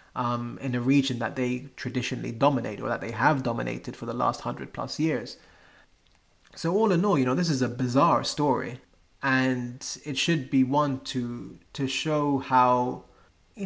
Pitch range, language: 120-140 Hz, English